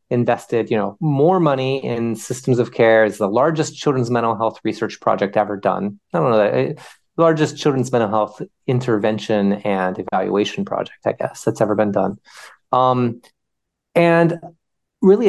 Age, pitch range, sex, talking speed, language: 30-49, 110-155 Hz, male, 155 wpm, English